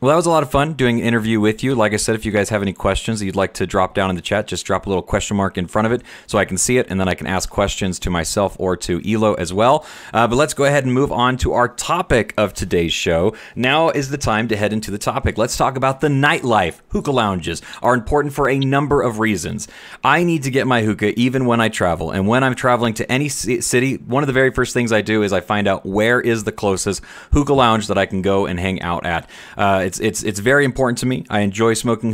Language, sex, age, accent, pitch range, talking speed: English, male, 30-49, American, 95-130 Hz, 275 wpm